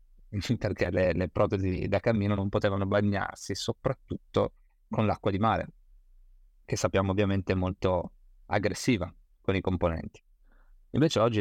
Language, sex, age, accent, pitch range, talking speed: Italian, male, 30-49, native, 95-115 Hz, 130 wpm